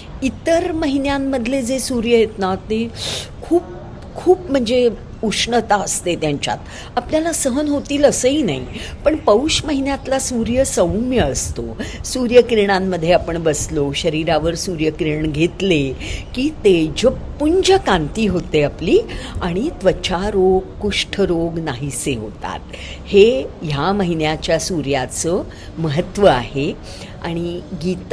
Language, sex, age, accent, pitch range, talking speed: English, female, 50-69, Indian, 150-220 Hz, 80 wpm